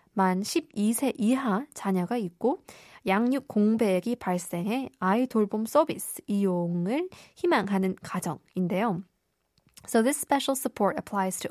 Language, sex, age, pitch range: Korean, female, 20-39, 190-255 Hz